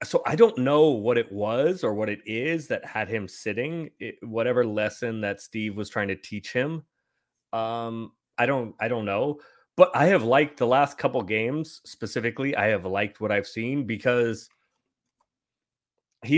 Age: 30-49